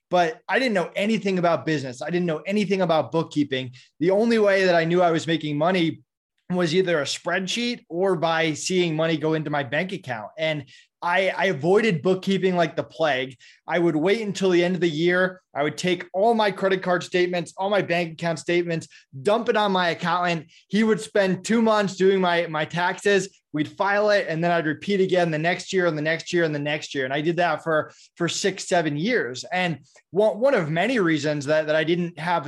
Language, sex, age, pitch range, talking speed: English, male, 20-39, 155-190 Hz, 215 wpm